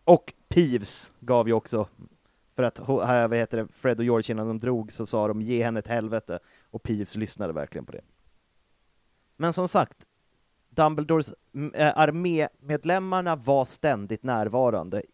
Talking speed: 140 wpm